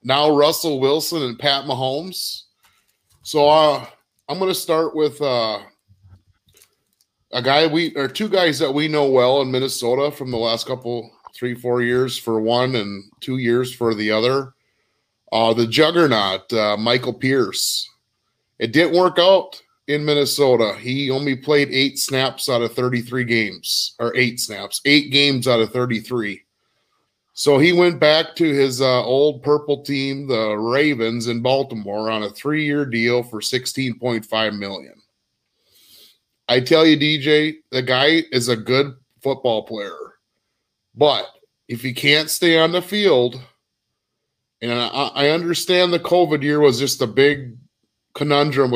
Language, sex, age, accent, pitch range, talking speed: English, male, 30-49, American, 115-145 Hz, 150 wpm